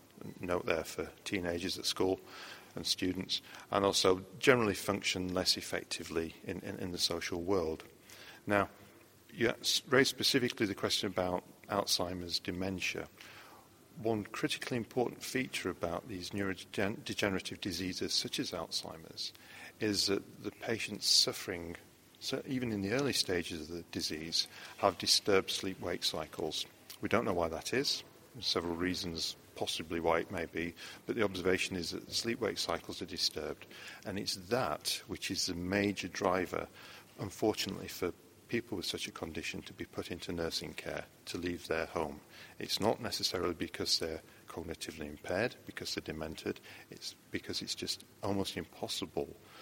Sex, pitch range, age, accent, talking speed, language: male, 85-100 Hz, 40-59, British, 150 wpm, English